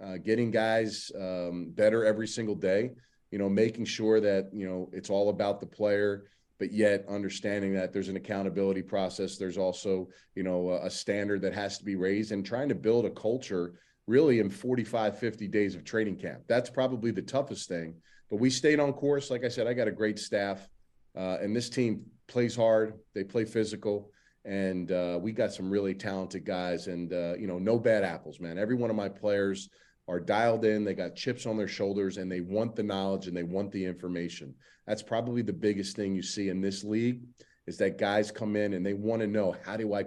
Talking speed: 215 wpm